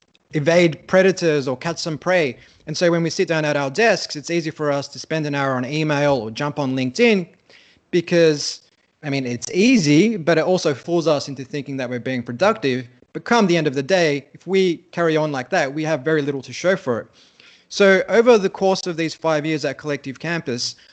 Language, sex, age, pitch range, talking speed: English, male, 30-49, 140-170 Hz, 220 wpm